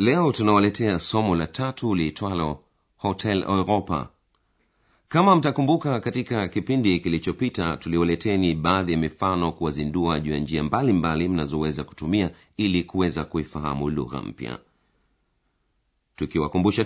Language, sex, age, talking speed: Swahili, male, 40-59, 105 wpm